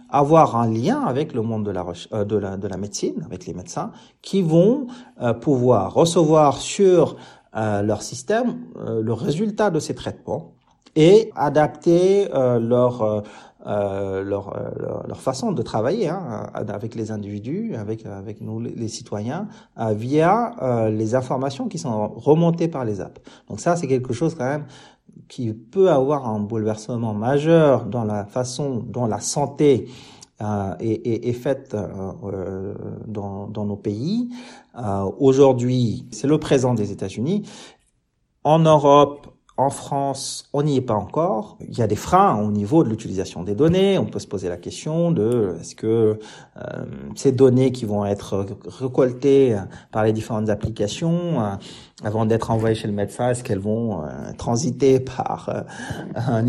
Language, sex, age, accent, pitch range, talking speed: French, male, 40-59, French, 105-145 Hz, 155 wpm